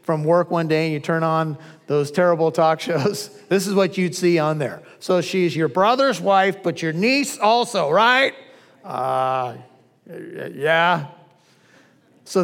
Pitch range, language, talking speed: 160-195 Hz, English, 155 wpm